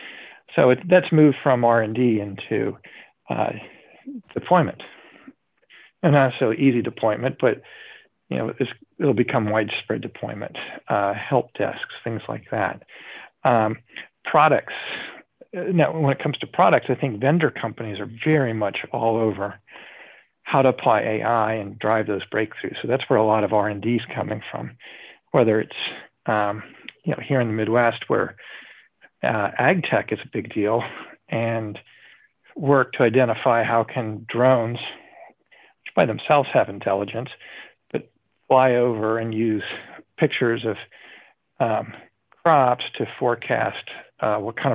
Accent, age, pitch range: American, 40-59, 110-130 Hz